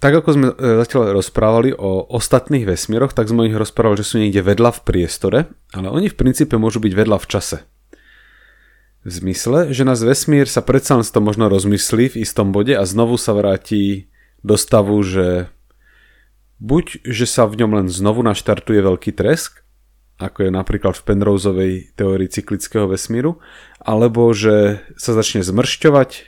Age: 30-49